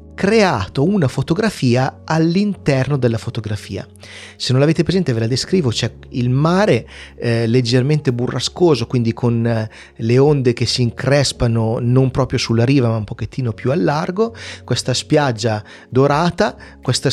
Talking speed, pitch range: 140 wpm, 120-170 Hz